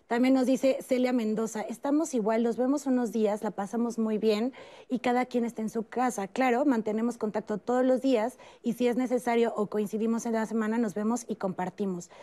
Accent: Mexican